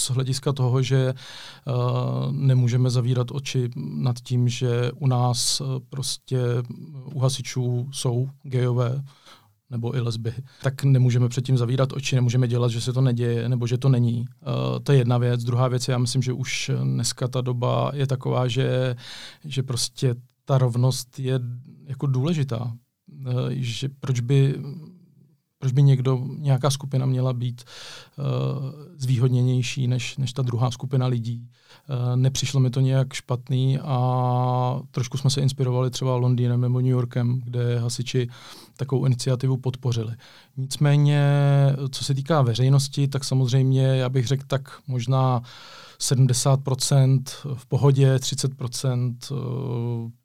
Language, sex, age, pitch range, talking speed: Czech, male, 40-59, 125-135 Hz, 140 wpm